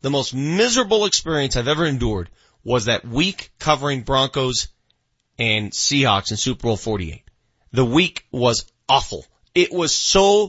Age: 30-49